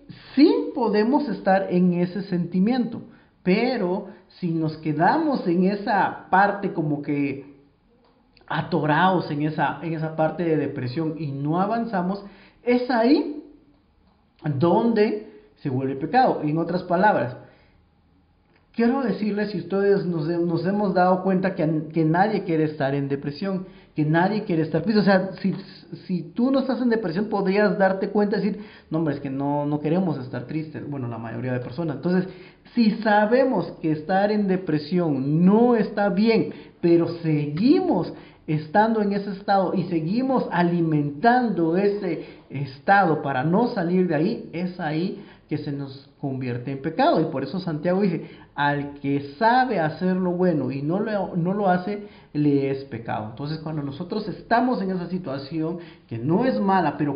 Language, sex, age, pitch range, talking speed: Spanish, male, 40-59, 150-205 Hz, 155 wpm